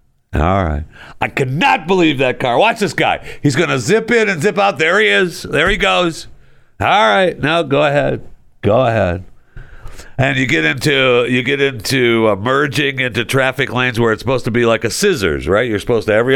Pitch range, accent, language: 110-160 Hz, American, English